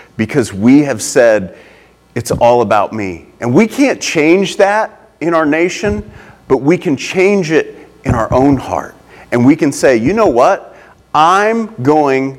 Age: 40-59